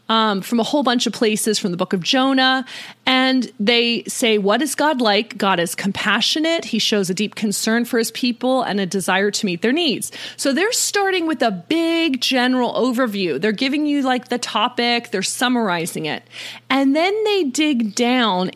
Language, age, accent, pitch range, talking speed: English, 30-49, American, 215-280 Hz, 190 wpm